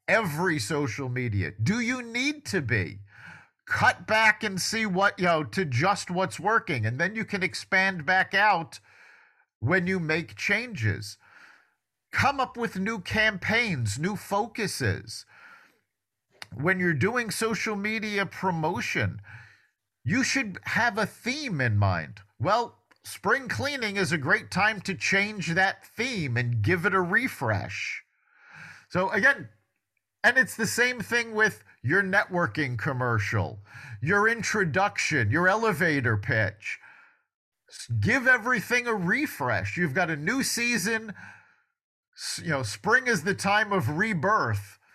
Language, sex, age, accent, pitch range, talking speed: English, male, 50-69, American, 135-220 Hz, 130 wpm